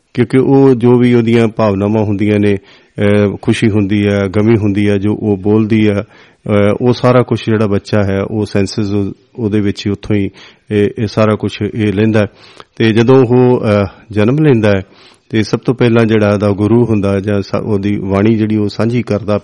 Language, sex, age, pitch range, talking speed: Punjabi, male, 40-59, 100-115 Hz, 175 wpm